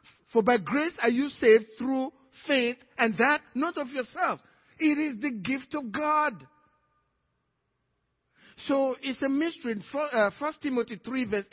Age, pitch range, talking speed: 50-69, 195-260 Hz, 150 wpm